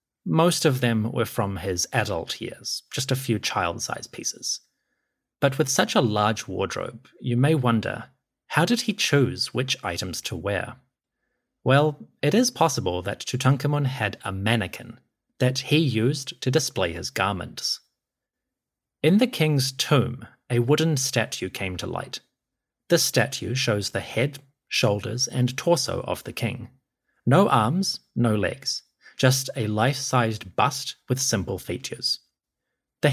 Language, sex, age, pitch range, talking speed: English, male, 30-49, 105-140 Hz, 145 wpm